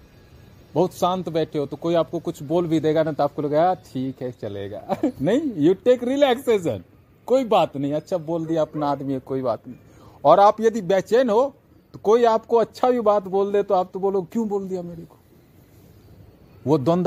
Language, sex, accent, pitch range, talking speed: Hindi, male, native, 125-175 Hz, 200 wpm